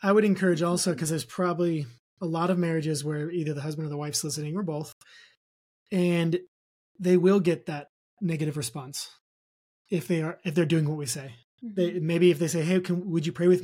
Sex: male